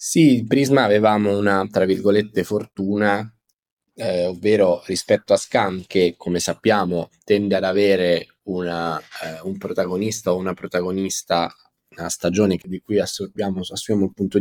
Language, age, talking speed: Italian, 10-29, 135 wpm